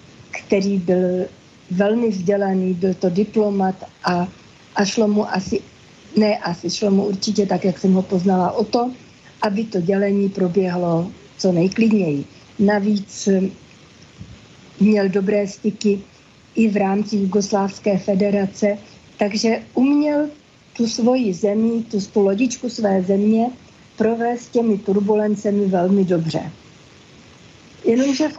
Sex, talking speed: female, 115 wpm